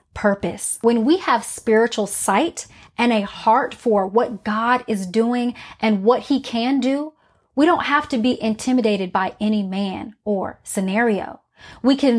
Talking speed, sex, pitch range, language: 160 wpm, female, 210-255 Hz, English